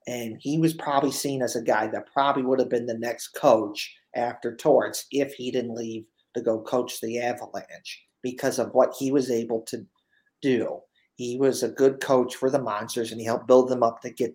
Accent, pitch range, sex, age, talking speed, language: American, 120-145 Hz, male, 40-59, 215 wpm, English